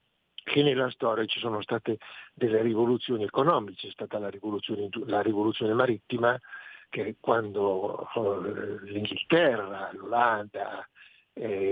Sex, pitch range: male, 105-145 Hz